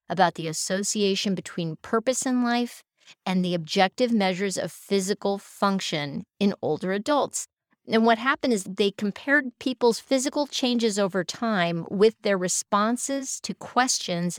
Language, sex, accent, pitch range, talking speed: English, female, American, 185-230 Hz, 140 wpm